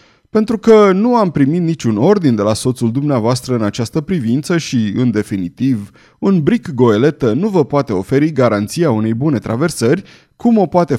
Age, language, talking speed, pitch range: 30-49, Romanian, 170 wpm, 115-170 Hz